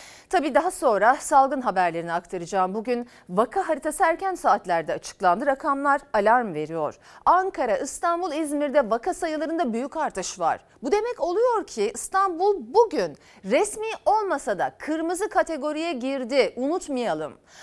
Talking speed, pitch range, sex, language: 125 wpm, 235-345 Hz, female, Turkish